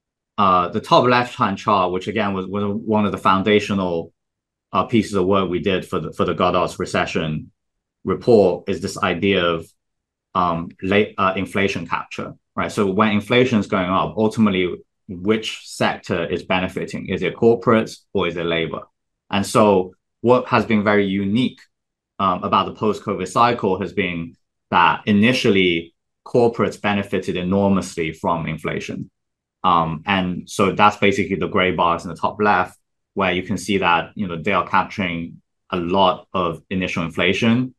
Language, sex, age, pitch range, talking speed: English, male, 20-39, 90-105 Hz, 160 wpm